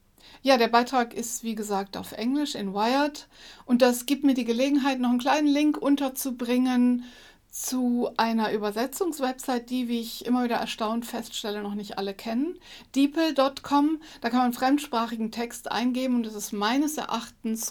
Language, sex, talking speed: German, female, 165 wpm